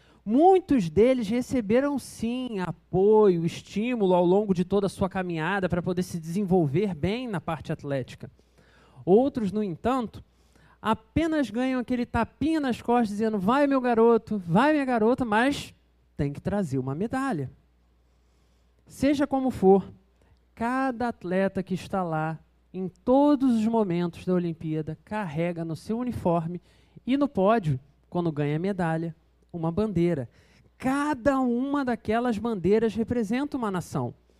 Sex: male